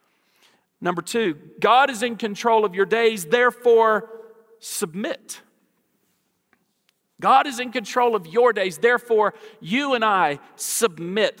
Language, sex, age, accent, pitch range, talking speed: English, male, 40-59, American, 200-245 Hz, 120 wpm